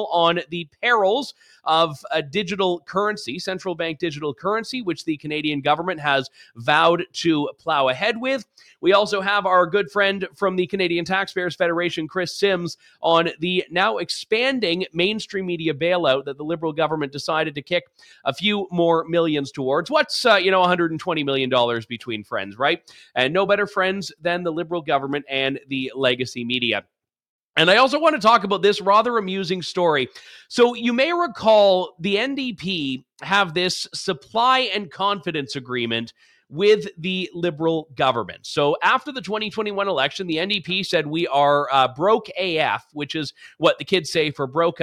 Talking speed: 165 wpm